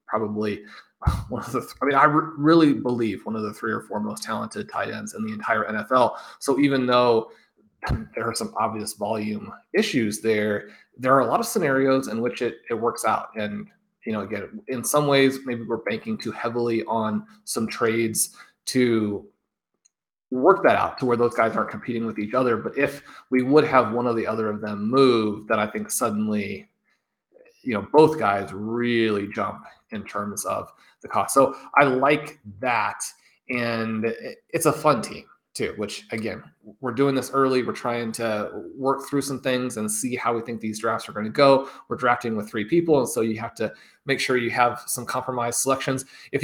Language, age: English, 30-49